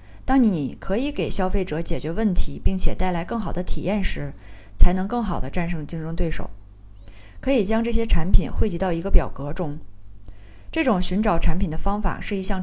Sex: female